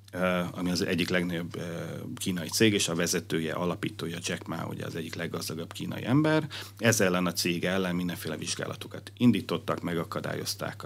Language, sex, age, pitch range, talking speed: Hungarian, male, 40-59, 85-110 Hz, 150 wpm